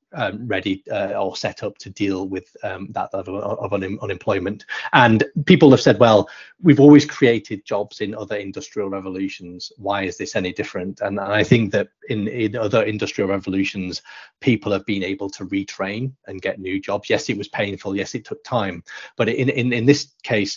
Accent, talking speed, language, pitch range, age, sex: British, 195 wpm, English, 95-105 Hz, 30-49, male